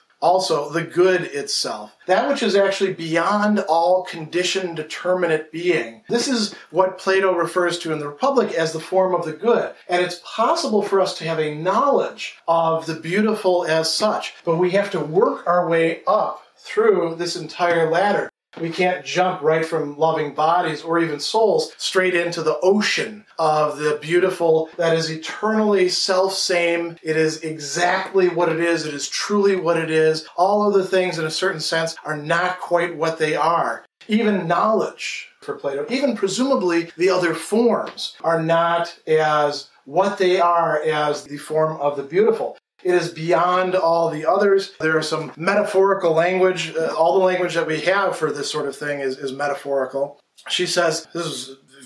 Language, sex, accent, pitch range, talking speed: English, male, American, 160-190 Hz, 175 wpm